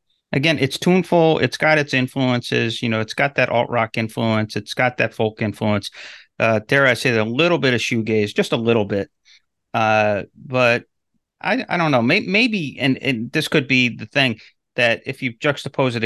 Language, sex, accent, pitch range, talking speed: English, male, American, 105-125 Hz, 200 wpm